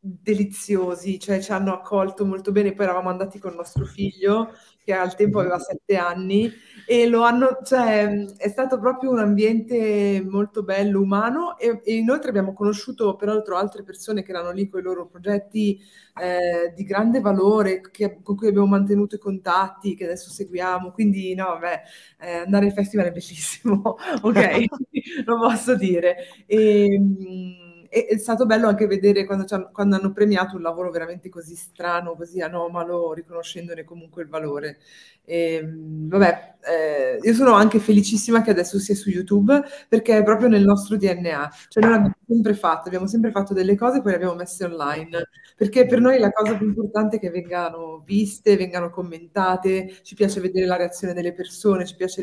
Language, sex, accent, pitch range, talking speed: Italian, female, native, 180-215 Hz, 170 wpm